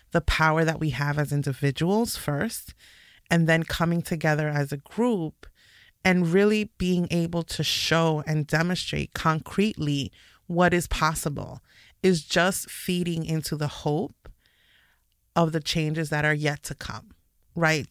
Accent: American